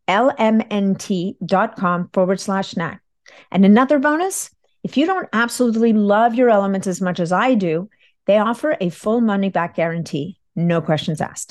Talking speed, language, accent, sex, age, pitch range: 150 wpm, English, American, female, 50-69, 175-215 Hz